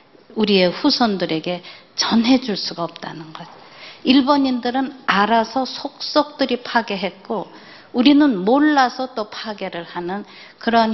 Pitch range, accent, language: 175-250 Hz, native, Korean